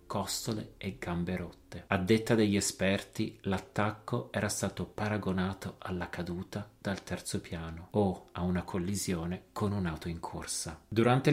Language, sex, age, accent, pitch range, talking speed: Italian, male, 30-49, native, 90-115 Hz, 140 wpm